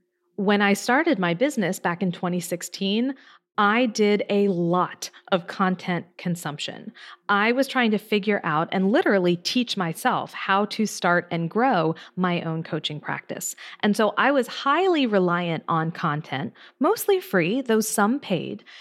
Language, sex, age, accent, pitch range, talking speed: English, female, 40-59, American, 175-230 Hz, 150 wpm